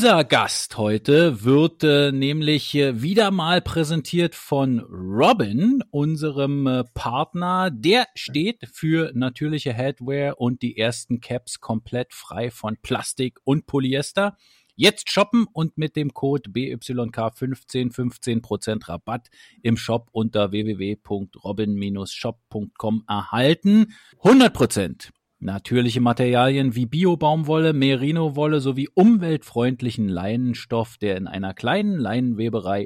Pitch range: 115-160 Hz